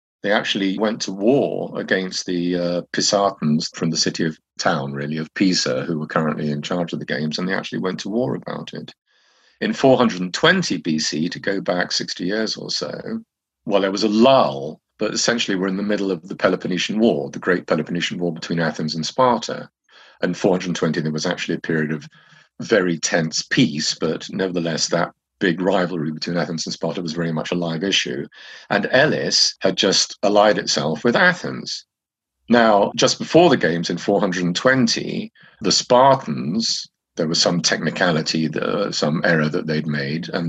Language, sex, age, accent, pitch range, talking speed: English, male, 50-69, British, 80-110 Hz, 175 wpm